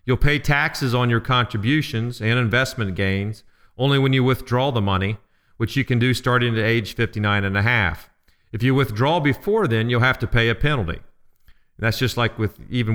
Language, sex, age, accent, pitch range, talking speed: English, male, 40-59, American, 105-130 Hz, 200 wpm